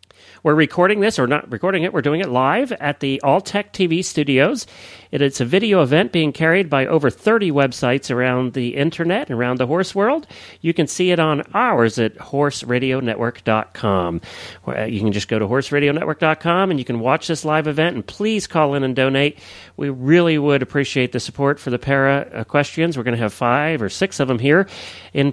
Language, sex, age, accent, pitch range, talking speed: English, male, 40-59, American, 120-170 Hz, 190 wpm